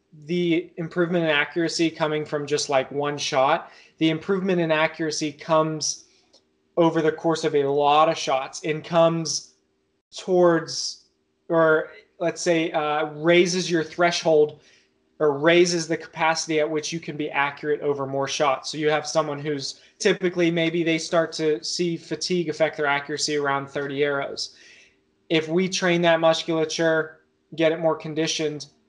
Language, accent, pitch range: English, American, 140-165 Hz